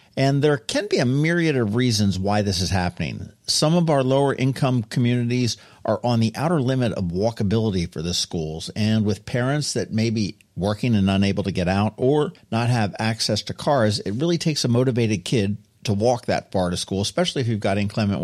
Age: 50-69